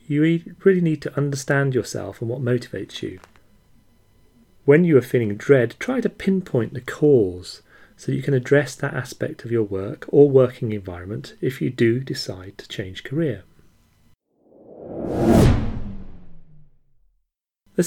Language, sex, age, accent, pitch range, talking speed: English, male, 40-59, British, 105-145 Hz, 135 wpm